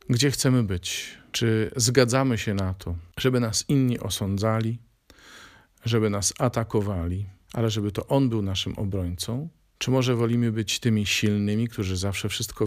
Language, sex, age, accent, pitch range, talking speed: Polish, male, 50-69, native, 95-120 Hz, 145 wpm